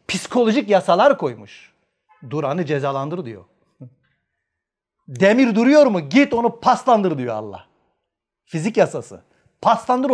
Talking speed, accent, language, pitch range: 105 wpm, native, Turkish, 145-230 Hz